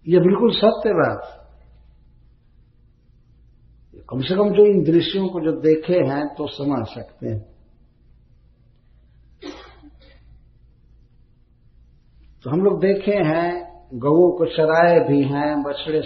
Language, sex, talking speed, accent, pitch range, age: Hindi, male, 110 wpm, native, 120-180 Hz, 60-79